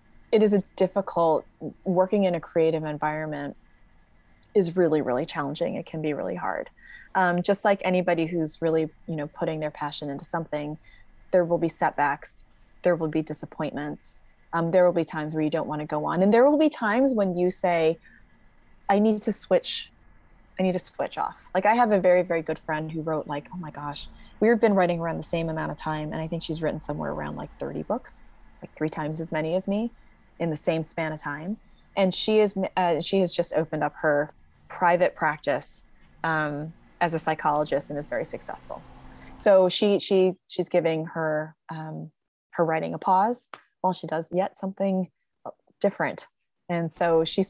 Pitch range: 155-185 Hz